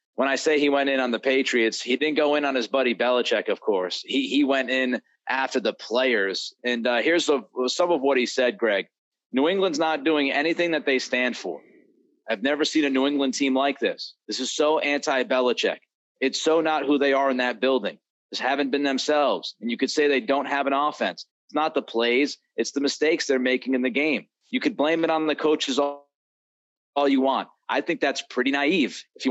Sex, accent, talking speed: male, American, 225 wpm